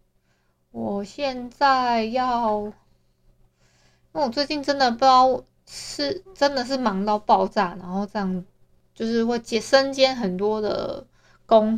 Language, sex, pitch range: Chinese, female, 205-270 Hz